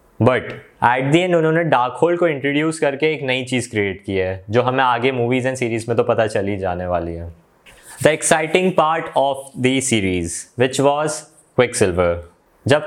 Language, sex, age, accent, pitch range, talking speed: Hindi, male, 20-39, native, 115-155 Hz, 180 wpm